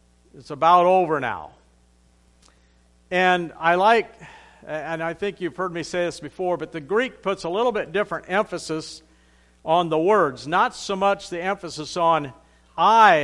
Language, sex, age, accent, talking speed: English, male, 50-69, American, 160 wpm